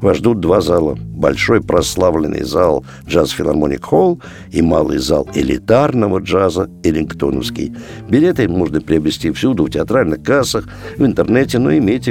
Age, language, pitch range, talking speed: 60-79, Russian, 85-130 Hz, 135 wpm